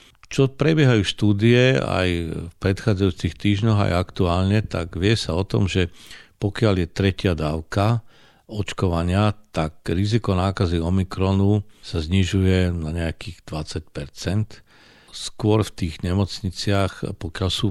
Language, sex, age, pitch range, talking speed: Slovak, male, 50-69, 90-105 Hz, 120 wpm